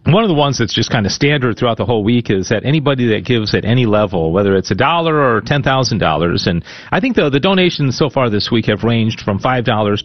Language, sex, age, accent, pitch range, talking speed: English, male, 40-59, American, 100-135 Hz, 245 wpm